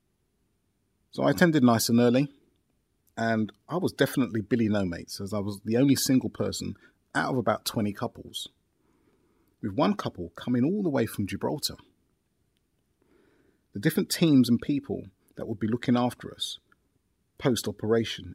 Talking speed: 150 wpm